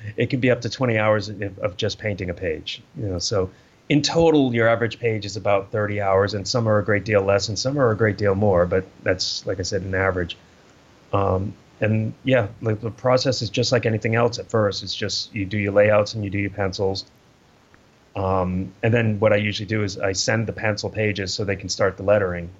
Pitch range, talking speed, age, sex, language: 95-110 Hz, 235 wpm, 30-49, male, English